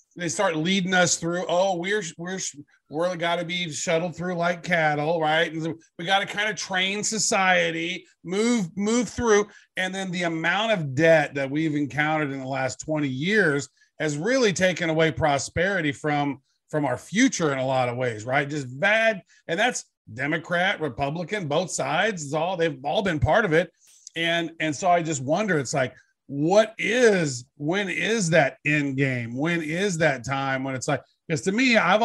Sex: male